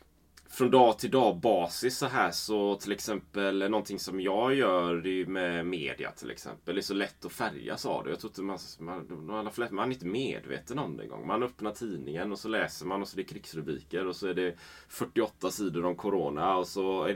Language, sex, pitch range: Swedish, male, 85-110 Hz